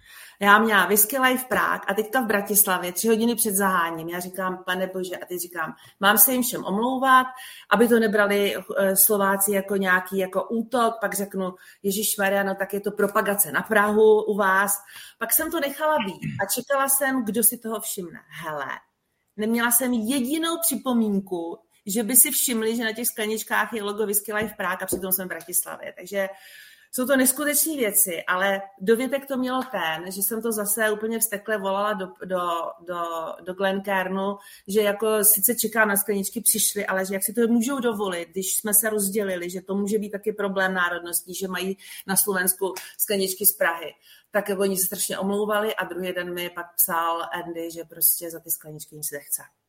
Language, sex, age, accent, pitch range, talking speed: Czech, female, 40-59, native, 185-225 Hz, 185 wpm